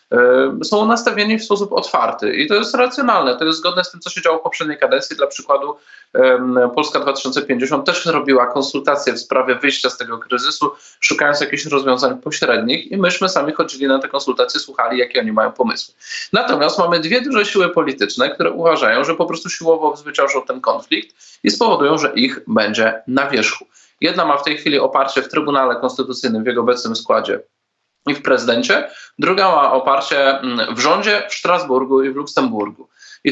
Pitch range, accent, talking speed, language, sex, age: 130-185 Hz, native, 175 wpm, Polish, male, 20-39